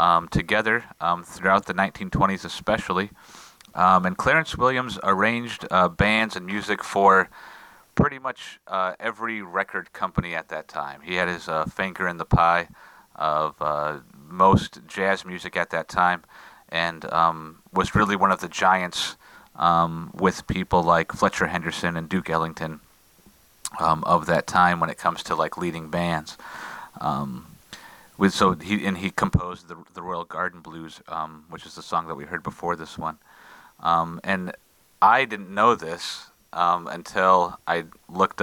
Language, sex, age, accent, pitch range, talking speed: English, male, 30-49, American, 85-100 Hz, 160 wpm